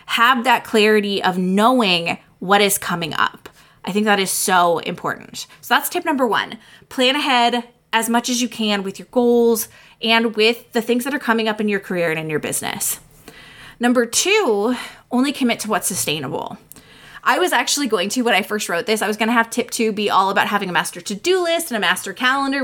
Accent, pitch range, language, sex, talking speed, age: American, 195-245 Hz, English, female, 210 wpm, 20-39